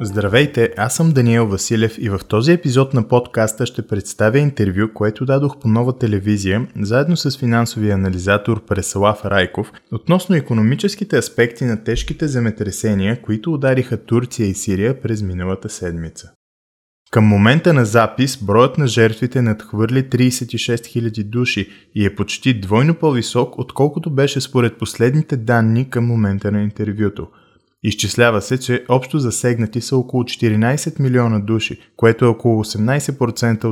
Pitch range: 105-125 Hz